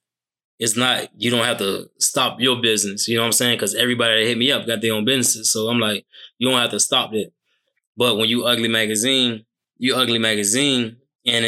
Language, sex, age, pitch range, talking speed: English, male, 10-29, 115-130 Hz, 220 wpm